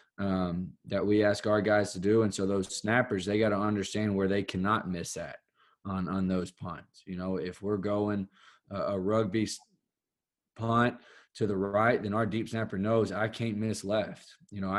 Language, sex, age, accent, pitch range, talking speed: English, male, 20-39, American, 100-110 Hz, 190 wpm